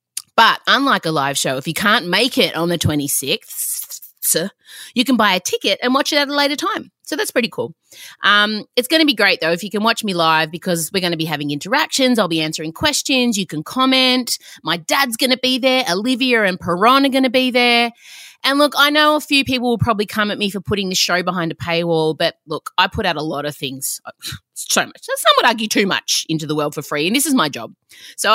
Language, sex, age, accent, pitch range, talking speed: English, female, 30-49, Australian, 160-255 Hz, 245 wpm